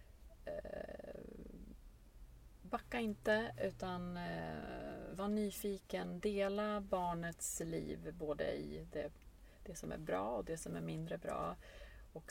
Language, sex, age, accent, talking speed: Swedish, female, 30-49, native, 100 wpm